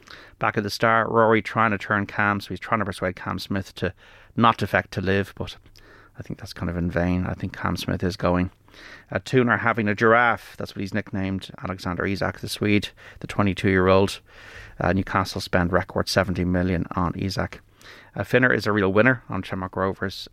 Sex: male